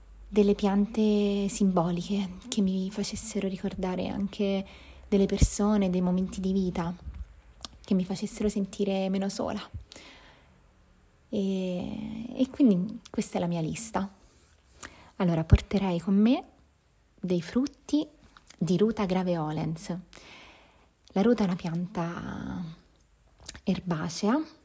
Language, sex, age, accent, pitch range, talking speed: Italian, female, 20-39, native, 175-210 Hz, 105 wpm